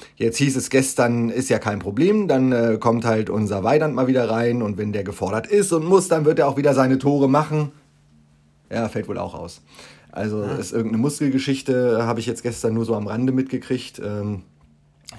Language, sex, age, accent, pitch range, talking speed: German, male, 30-49, German, 95-120 Hz, 205 wpm